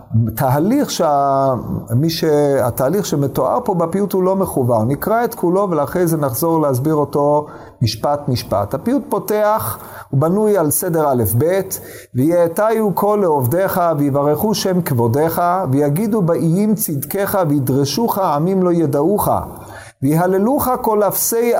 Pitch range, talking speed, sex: 140-195 Hz, 120 wpm, male